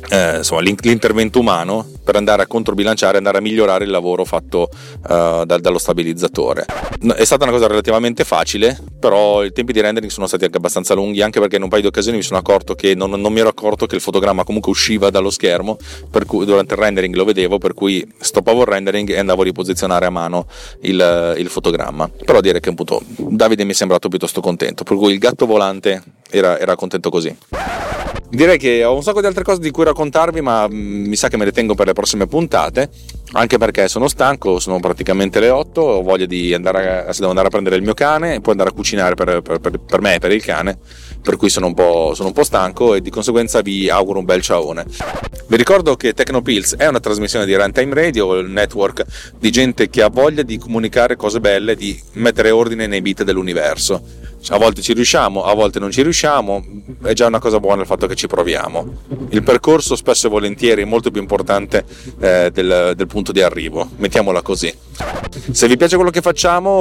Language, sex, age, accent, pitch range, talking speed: Italian, male, 30-49, native, 95-115 Hz, 215 wpm